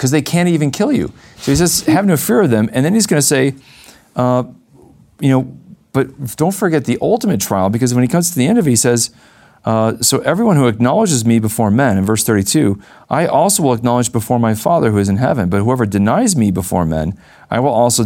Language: English